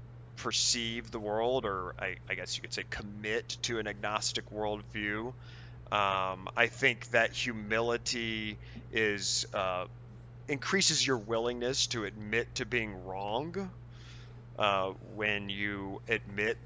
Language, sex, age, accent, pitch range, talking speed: English, male, 30-49, American, 105-125 Hz, 120 wpm